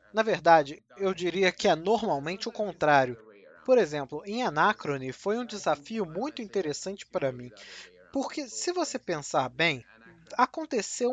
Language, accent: Portuguese, Brazilian